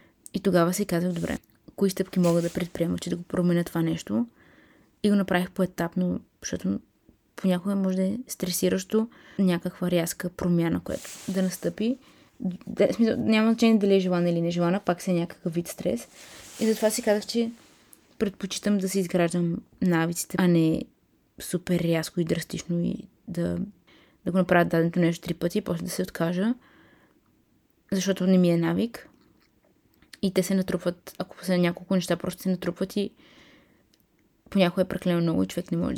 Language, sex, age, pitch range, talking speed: Bulgarian, female, 20-39, 175-205 Hz, 170 wpm